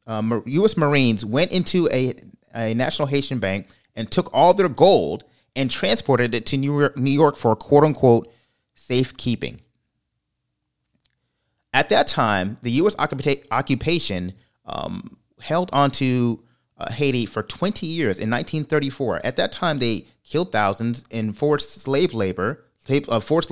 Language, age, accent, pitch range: English, 30-49, American, 115-145 Hz